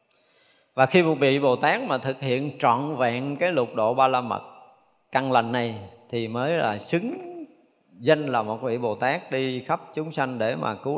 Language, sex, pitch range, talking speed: Vietnamese, male, 120-165 Hz, 200 wpm